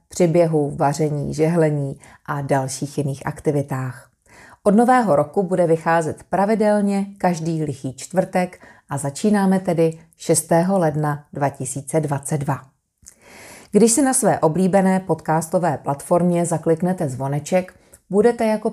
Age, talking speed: 30-49, 105 wpm